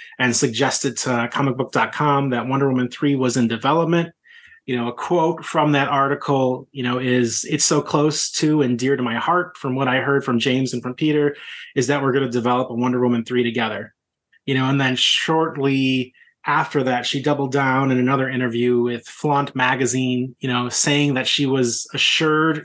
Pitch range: 125-145 Hz